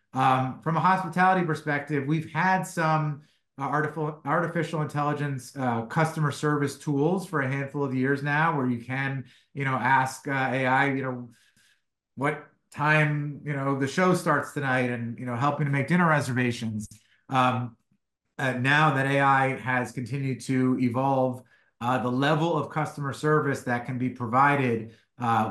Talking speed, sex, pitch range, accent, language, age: 160 wpm, male, 125-155 Hz, American, English, 30-49